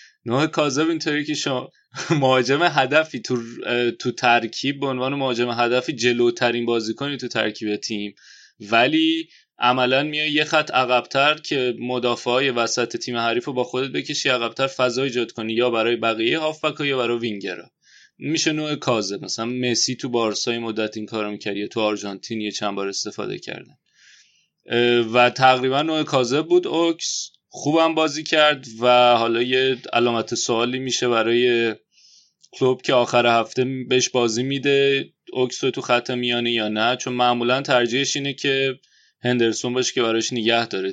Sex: male